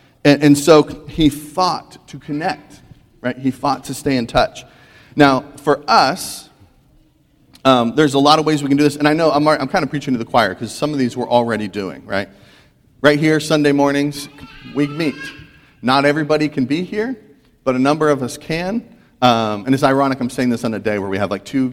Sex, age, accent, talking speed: male, 40-59, American, 215 wpm